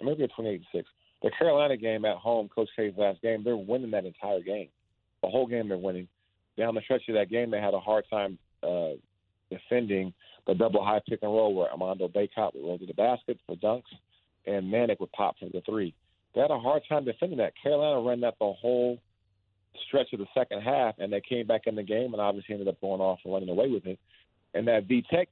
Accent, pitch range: American, 100-125 Hz